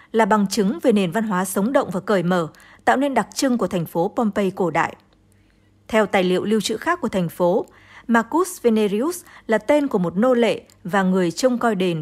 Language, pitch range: English, 185-245 Hz